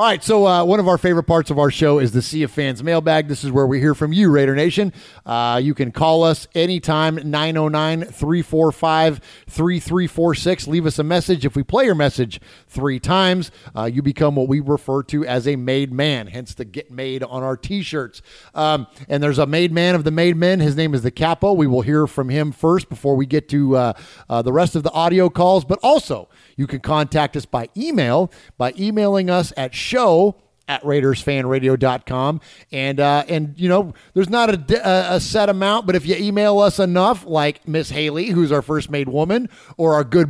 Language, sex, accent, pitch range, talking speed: English, male, American, 140-180 Hz, 205 wpm